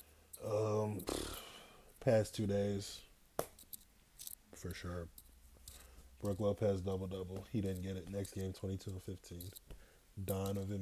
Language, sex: English, male